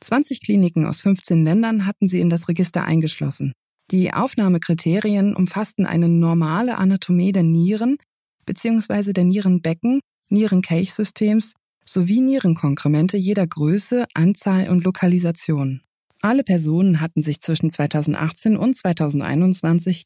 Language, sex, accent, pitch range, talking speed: German, female, German, 160-200 Hz, 115 wpm